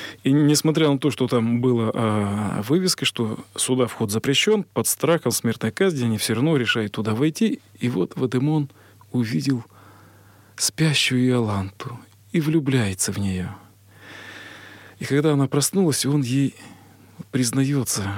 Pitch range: 110-145 Hz